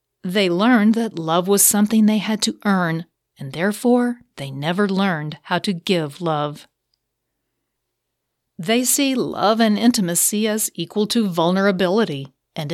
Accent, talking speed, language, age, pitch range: American, 135 wpm, English, 40-59, 160-210 Hz